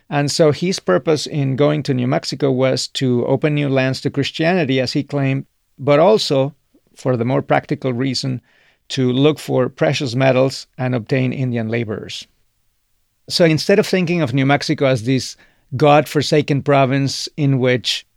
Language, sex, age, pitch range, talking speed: English, male, 40-59, 130-150 Hz, 160 wpm